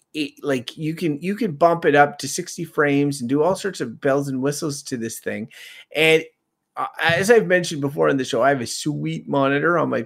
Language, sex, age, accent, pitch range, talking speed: English, male, 30-49, American, 125-160 Hz, 220 wpm